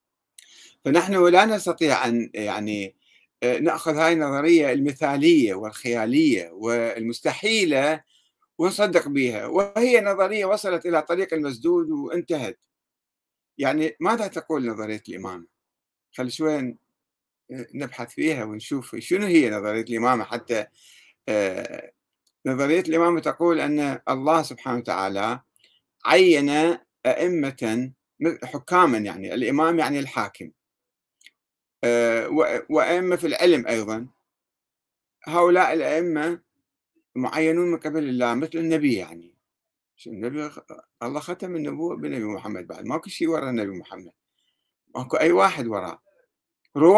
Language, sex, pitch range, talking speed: Arabic, male, 125-175 Hz, 100 wpm